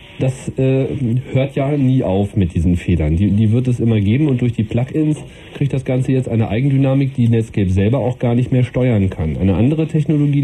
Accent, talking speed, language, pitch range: German, 215 wpm, German, 110-140 Hz